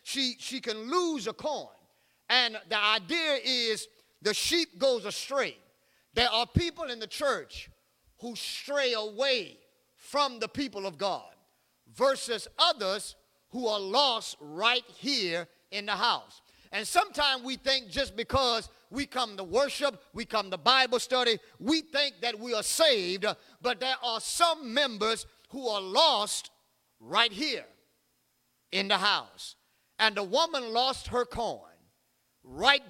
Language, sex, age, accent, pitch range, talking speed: English, male, 50-69, American, 215-275 Hz, 145 wpm